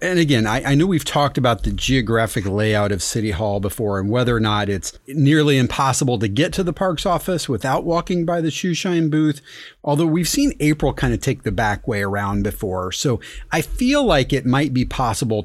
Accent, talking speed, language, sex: American, 210 wpm, English, male